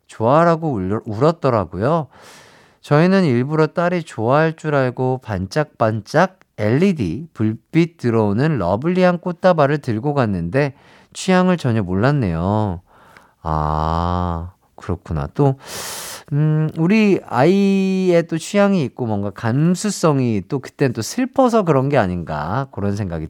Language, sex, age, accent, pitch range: Korean, male, 50-69, native, 110-165 Hz